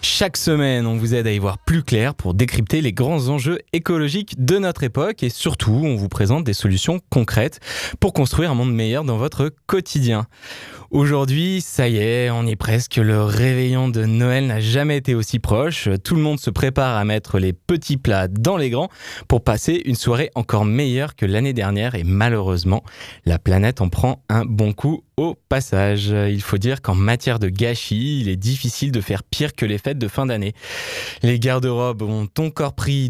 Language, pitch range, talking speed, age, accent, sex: French, 105-135 Hz, 195 wpm, 20-39, French, male